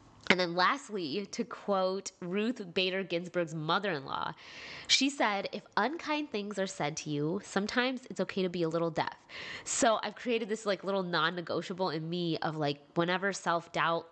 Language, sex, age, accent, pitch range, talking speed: English, female, 20-39, American, 165-220 Hz, 165 wpm